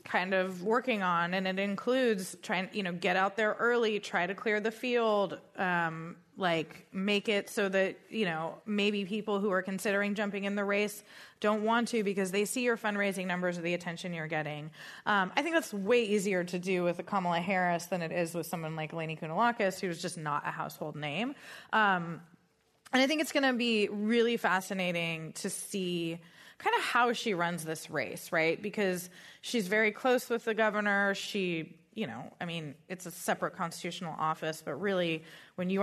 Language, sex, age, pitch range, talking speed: English, female, 20-39, 175-225 Hz, 195 wpm